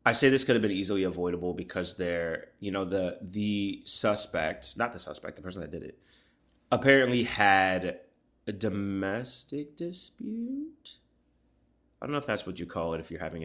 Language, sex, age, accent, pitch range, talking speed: English, male, 30-49, American, 90-110 Hz, 180 wpm